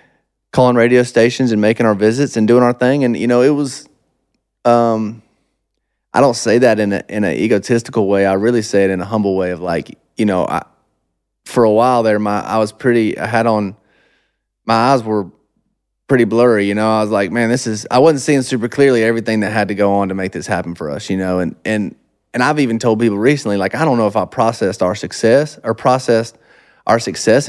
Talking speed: 225 wpm